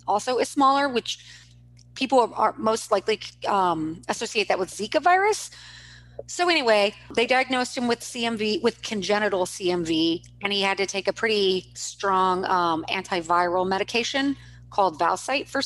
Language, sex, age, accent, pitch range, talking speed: English, female, 30-49, American, 180-230 Hz, 145 wpm